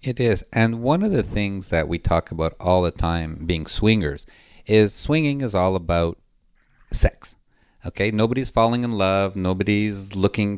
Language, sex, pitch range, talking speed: English, male, 90-110 Hz, 165 wpm